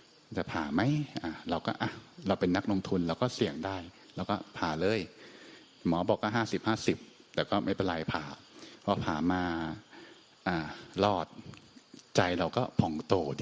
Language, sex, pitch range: Thai, male, 90-115 Hz